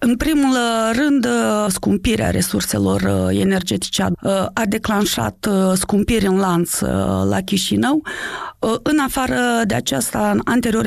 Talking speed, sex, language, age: 100 wpm, female, Romanian, 30-49